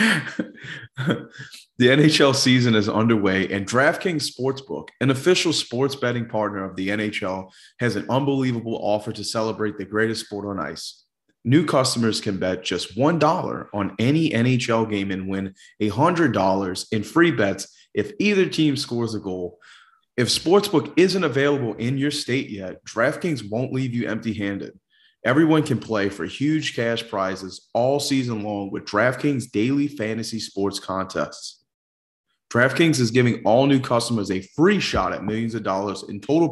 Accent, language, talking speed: American, English, 155 wpm